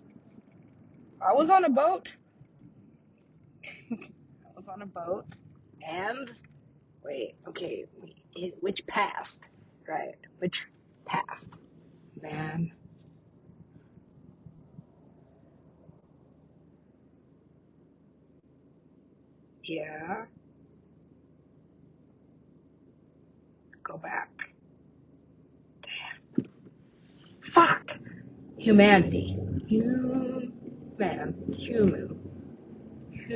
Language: English